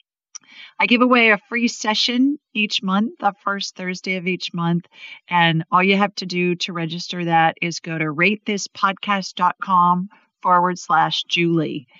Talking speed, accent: 150 wpm, American